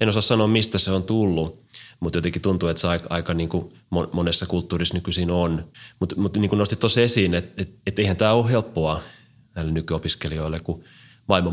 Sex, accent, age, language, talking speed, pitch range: male, native, 30-49, Finnish, 195 wpm, 85-105 Hz